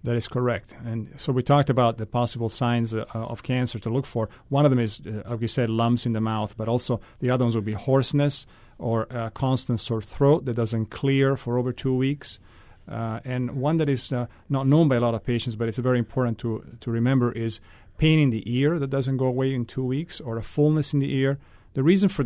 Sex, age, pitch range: male, 40-59, 110-135 Hz